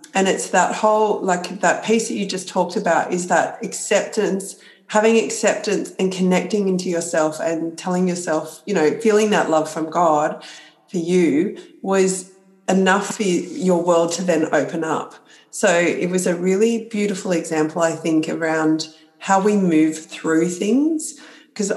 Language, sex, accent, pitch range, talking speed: English, female, Australian, 160-195 Hz, 160 wpm